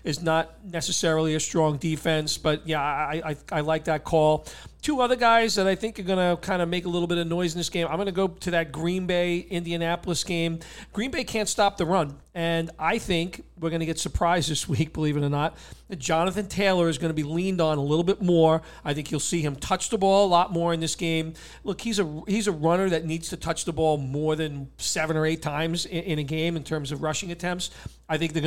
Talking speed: 250 wpm